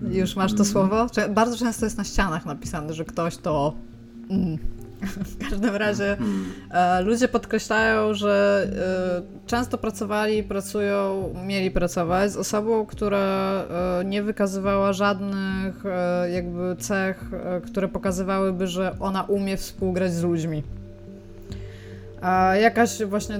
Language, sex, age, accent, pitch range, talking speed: Polish, female, 20-39, native, 170-205 Hz, 110 wpm